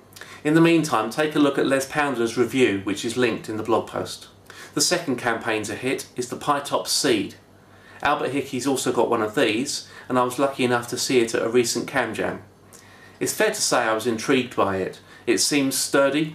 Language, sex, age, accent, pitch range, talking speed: English, male, 30-49, British, 110-135 Hz, 210 wpm